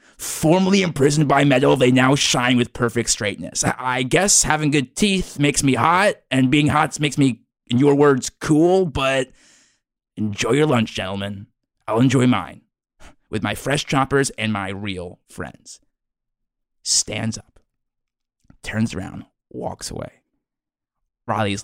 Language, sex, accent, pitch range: English, male, American, 110-155 Hz